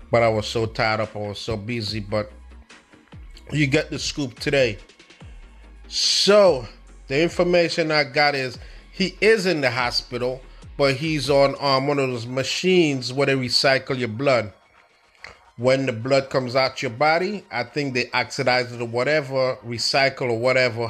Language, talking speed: English, 165 wpm